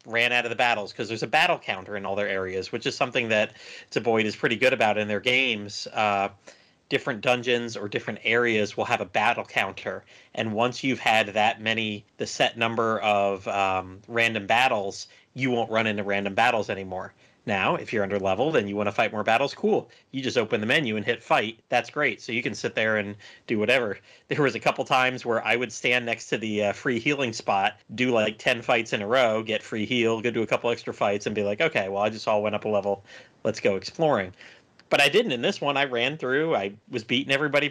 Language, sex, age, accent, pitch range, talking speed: English, male, 30-49, American, 105-135 Hz, 235 wpm